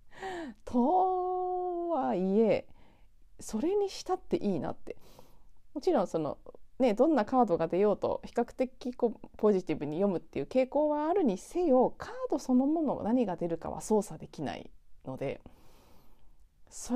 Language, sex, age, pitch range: Japanese, female, 30-49, 180-290 Hz